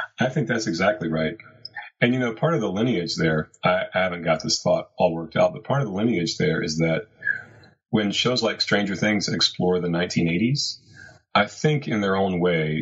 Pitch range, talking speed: 80-100 Hz, 205 wpm